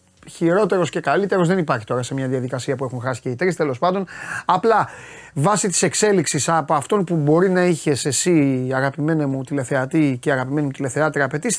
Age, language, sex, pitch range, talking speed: 30-49, Greek, male, 140-195 Hz, 180 wpm